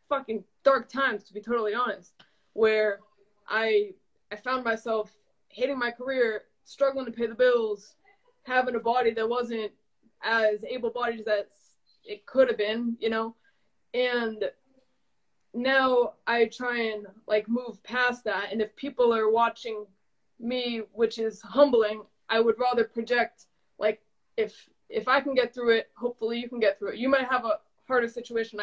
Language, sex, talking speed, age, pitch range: English, female, 160 wpm, 20-39, 215-250 Hz